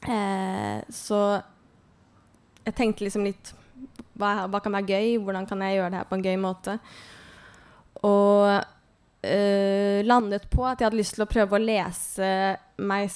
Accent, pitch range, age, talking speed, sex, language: Norwegian, 185-205 Hz, 20-39, 145 wpm, female, English